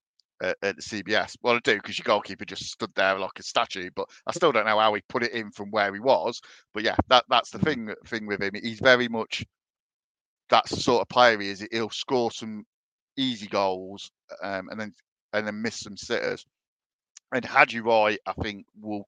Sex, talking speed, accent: male, 210 wpm, British